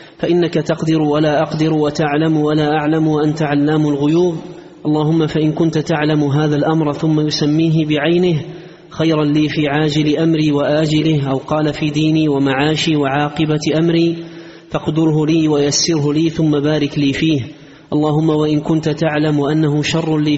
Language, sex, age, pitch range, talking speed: Arabic, male, 30-49, 150-160 Hz, 140 wpm